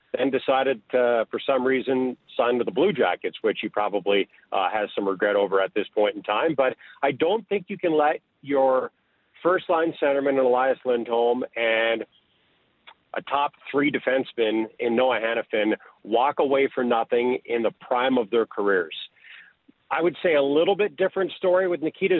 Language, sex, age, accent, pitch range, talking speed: English, male, 50-69, American, 130-170 Hz, 175 wpm